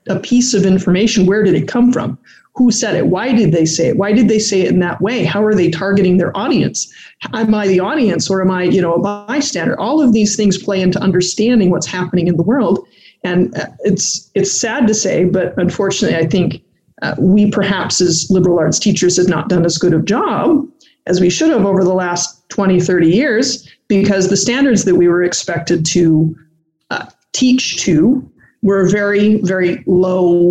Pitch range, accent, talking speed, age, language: 180-205 Hz, American, 205 wpm, 30-49, English